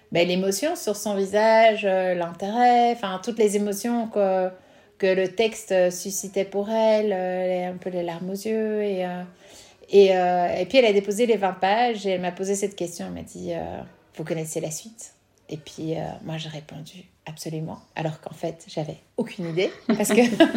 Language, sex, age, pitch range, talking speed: French, female, 30-49, 180-210 Hz, 195 wpm